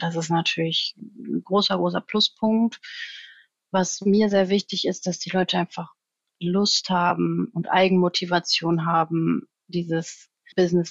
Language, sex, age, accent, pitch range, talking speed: German, female, 30-49, German, 180-220 Hz, 125 wpm